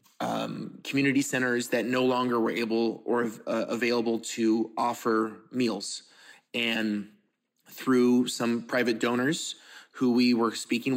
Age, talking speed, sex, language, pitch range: 20-39, 125 wpm, male, English, 120-130 Hz